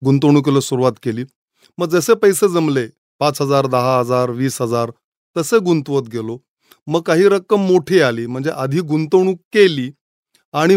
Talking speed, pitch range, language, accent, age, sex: 130 wpm, 135-175 Hz, Marathi, native, 30-49, male